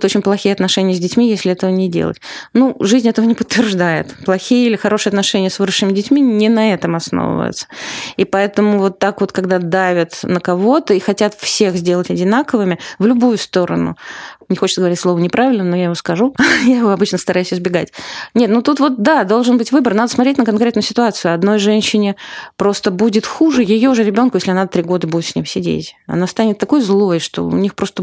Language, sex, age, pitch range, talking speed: Russian, female, 20-39, 185-225 Hz, 200 wpm